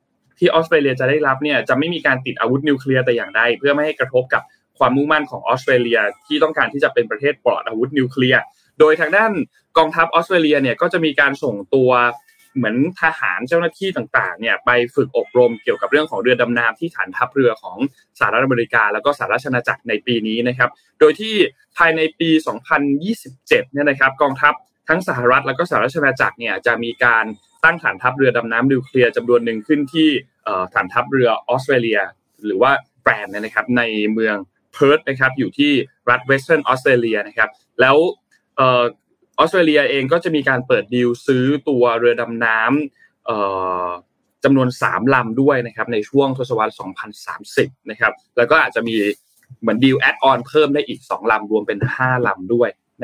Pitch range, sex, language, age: 120-155 Hz, male, Thai, 20-39